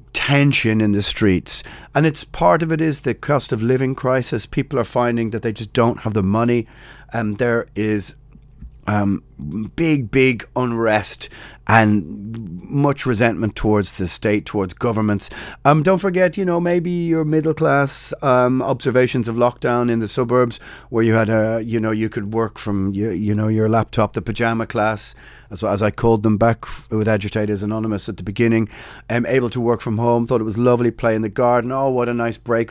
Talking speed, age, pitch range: 195 wpm, 30-49, 105-125 Hz